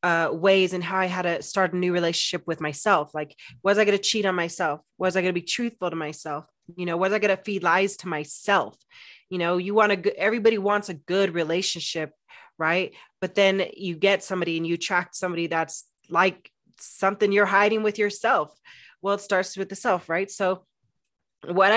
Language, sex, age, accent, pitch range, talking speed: English, female, 30-49, American, 175-205 Hz, 205 wpm